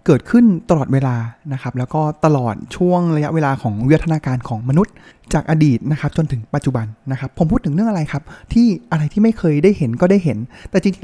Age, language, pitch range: 20-39, Thai, 130-165 Hz